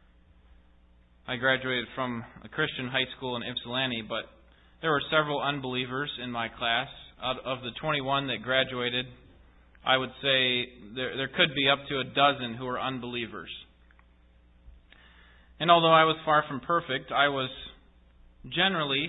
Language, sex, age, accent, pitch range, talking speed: English, male, 20-39, American, 105-145 Hz, 150 wpm